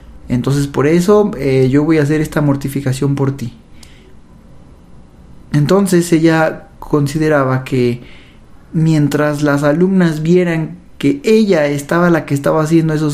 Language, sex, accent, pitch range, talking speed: Spanish, male, Mexican, 135-185 Hz, 130 wpm